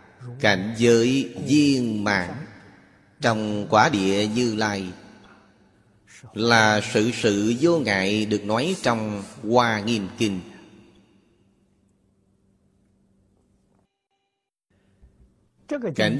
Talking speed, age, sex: 80 wpm, 30-49, male